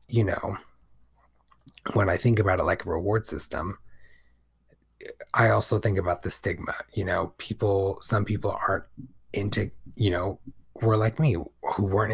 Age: 30-49